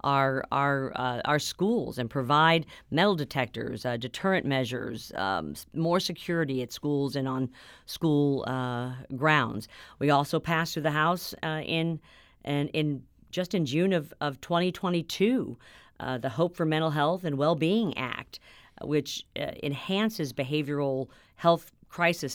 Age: 50-69